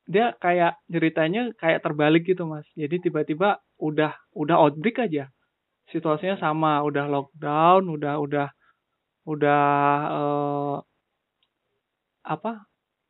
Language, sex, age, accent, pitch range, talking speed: Indonesian, male, 20-39, native, 145-180 Hz, 100 wpm